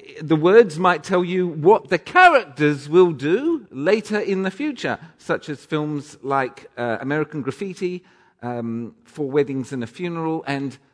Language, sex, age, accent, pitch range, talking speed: English, male, 50-69, British, 140-205 Hz, 155 wpm